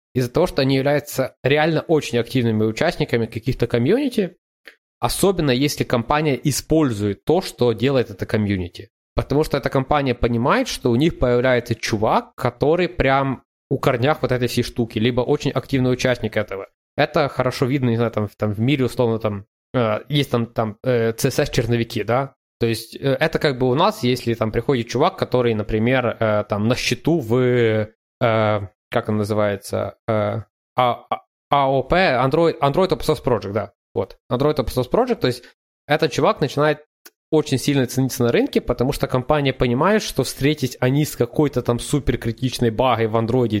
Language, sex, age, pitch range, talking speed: Ukrainian, male, 20-39, 115-145 Hz, 165 wpm